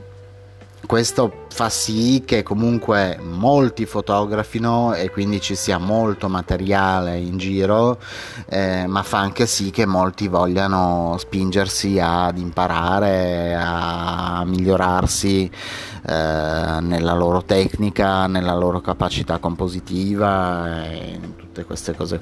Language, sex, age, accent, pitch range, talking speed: Italian, male, 30-49, native, 90-105 Hz, 110 wpm